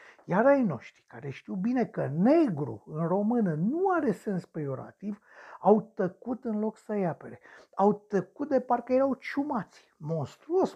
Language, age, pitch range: Romanian, 60-79, 160-240 Hz